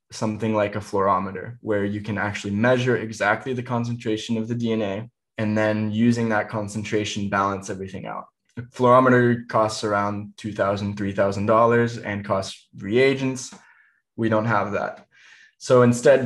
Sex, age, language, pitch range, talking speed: male, 20-39, English, 105-120 Hz, 140 wpm